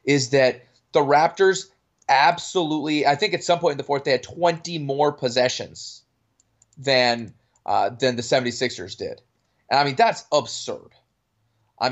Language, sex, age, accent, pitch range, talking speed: English, male, 20-39, American, 115-140 Hz, 150 wpm